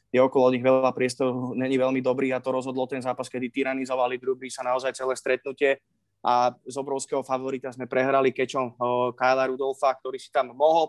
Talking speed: 180 wpm